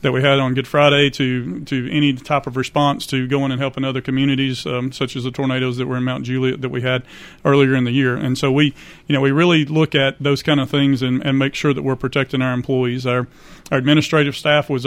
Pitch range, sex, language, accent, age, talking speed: 130-145 Hz, male, English, American, 40-59, 250 wpm